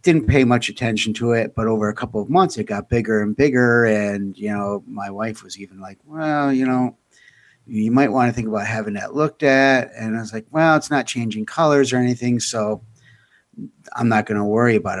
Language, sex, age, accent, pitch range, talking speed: English, male, 50-69, American, 105-130 Hz, 225 wpm